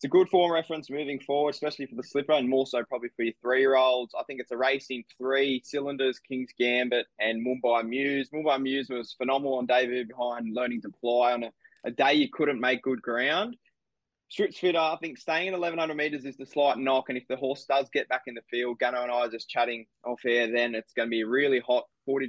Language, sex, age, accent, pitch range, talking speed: English, male, 20-39, Australian, 115-135 Hz, 240 wpm